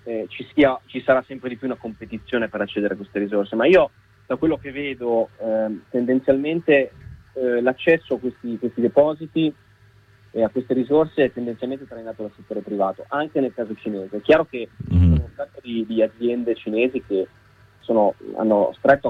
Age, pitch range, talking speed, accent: 30-49, 105-130 Hz, 180 wpm, native